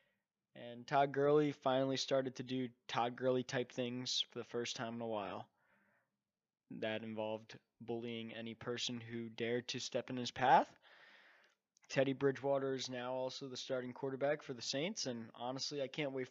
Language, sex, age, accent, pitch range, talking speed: English, male, 20-39, American, 120-135 Hz, 165 wpm